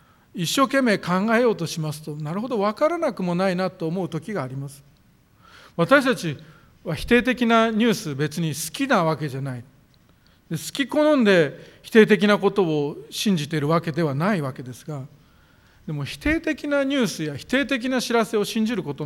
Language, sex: Japanese, male